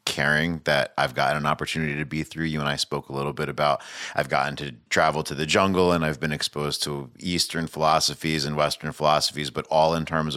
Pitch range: 70-85 Hz